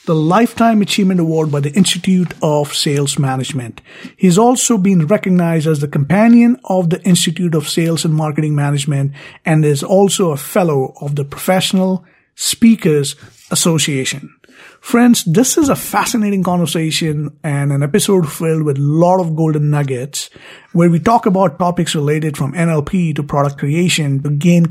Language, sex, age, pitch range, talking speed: English, male, 50-69, 150-200 Hz, 155 wpm